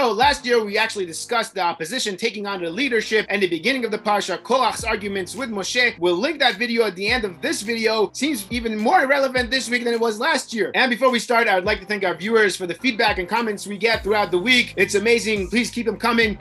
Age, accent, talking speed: 30-49, American, 250 wpm